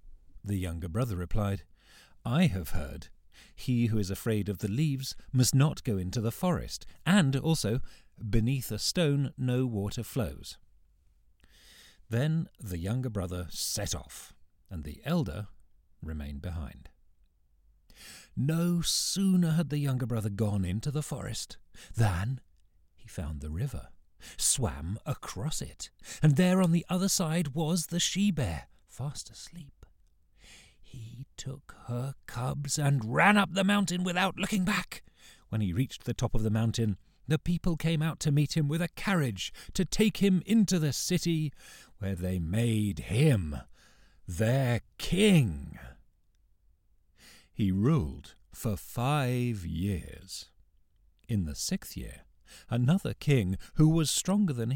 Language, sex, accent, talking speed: English, male, British, 135 wpm